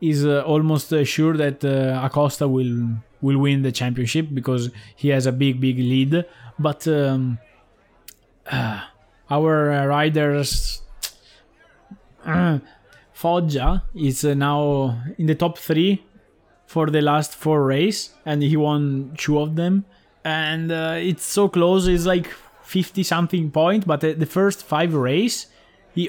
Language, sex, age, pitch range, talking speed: English, male, 20-39, 130-165 Hz, 140 wpm